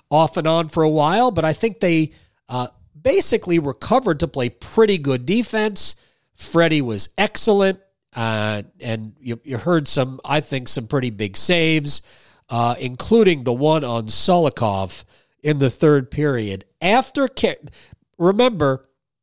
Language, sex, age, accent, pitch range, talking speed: English, male, 40-59, American, 120-170 Hz, 140 wpm